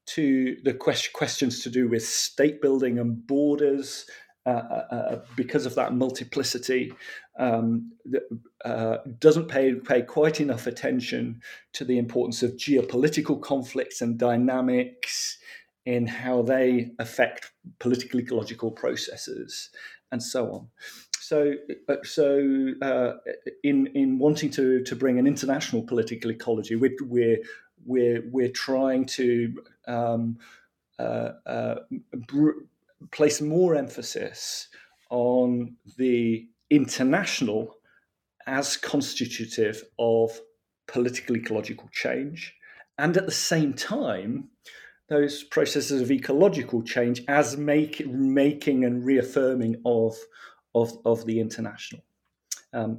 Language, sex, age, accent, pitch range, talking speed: English, male, 40-59, British, 120-145 Hz, 115 wpm